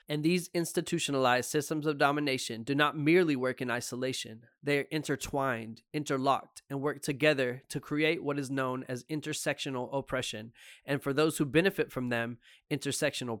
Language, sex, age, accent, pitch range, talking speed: English, male, 20-39, American, 125-155 Hz, 155 wpm